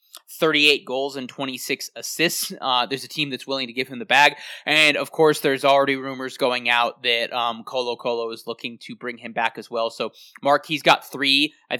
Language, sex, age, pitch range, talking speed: English, male, 20-39, 120-145 Hz, 215 wpm